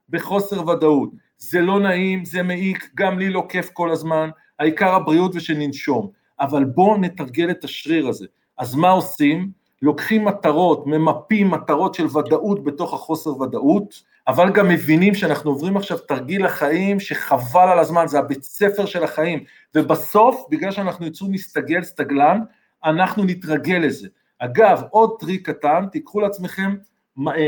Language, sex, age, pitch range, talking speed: Hebrew, male, 50-69, 155-200 Hz, 140 wpm